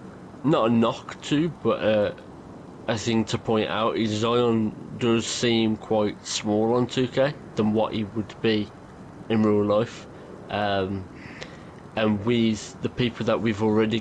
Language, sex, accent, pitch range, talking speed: English, male, British, 105-115 Hz, 150 wpm